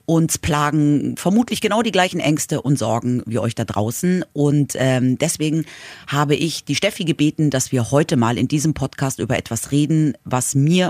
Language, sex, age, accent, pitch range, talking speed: German, female, 30-49, German, 120-150 Hz, 180 wpm